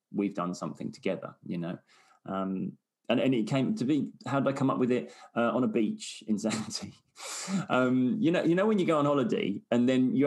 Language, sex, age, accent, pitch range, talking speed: English, male, 20-39, British, 110-140 Hz, 220 wpm